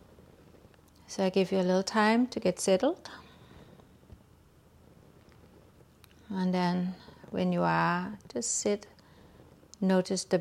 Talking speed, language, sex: 110 wpm, English, female